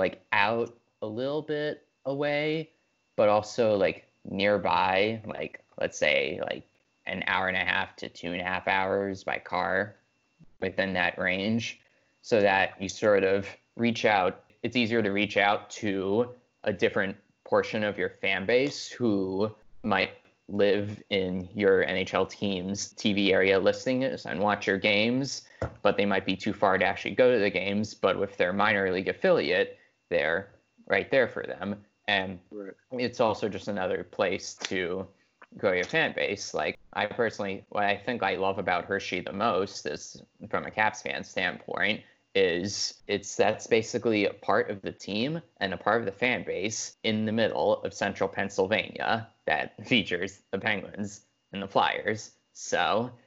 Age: 20-39